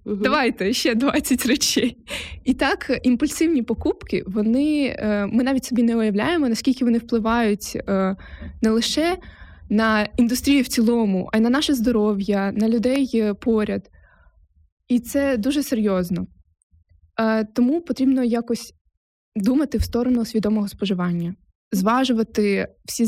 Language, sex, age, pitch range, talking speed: Ukrainian, female, 20-39, 205-245 Hz, 115 wpm